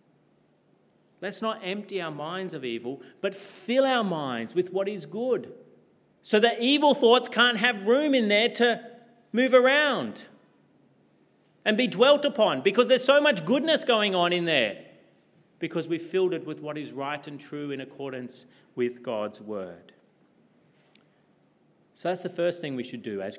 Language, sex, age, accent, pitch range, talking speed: English, male, 40-59, Australian, 140-210 Hz, 165 wpm